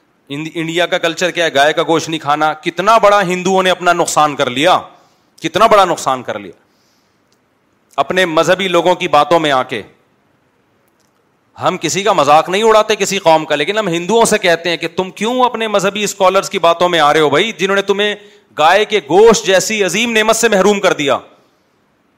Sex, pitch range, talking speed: male, 180-230 Hz, 200 wpm